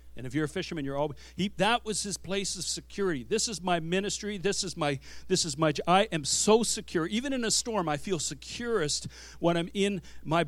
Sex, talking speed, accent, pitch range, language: male, 220 wpm, American, 130-205 Hz, English